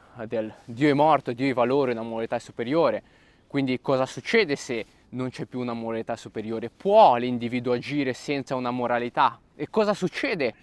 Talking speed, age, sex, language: 165 wpm, 20-39, male, Italian